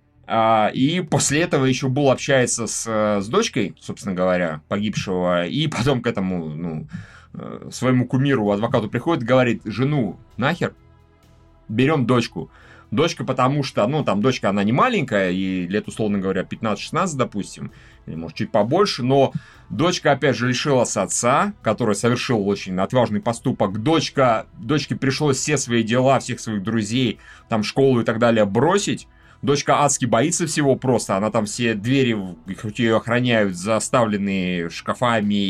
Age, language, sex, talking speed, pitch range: 30-49, Russian, male, 145 wpm, 100-130 Hz